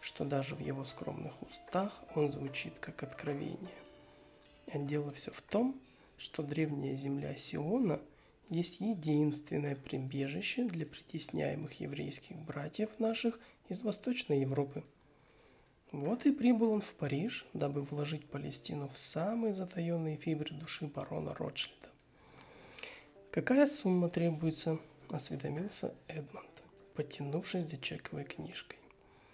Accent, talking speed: native, 110 wpm